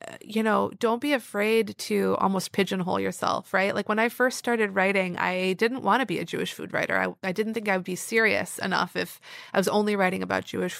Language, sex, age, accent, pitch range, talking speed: English, female, 30-49, American, 180-220 Hz, 230 wpm